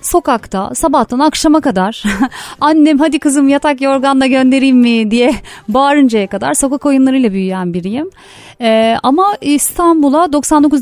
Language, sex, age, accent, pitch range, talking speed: Turkish, female, 30-49, native, 220-300 Hz, 120 wpm